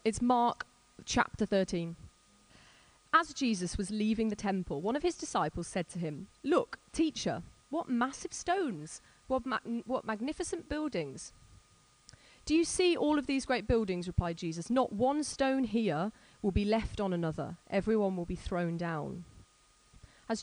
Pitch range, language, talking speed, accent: 175-230 Hz, English, 150 wpm, British